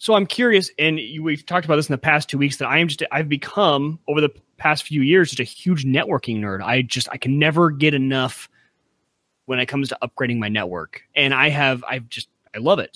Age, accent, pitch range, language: 30-49, American, 120-160 Hz, English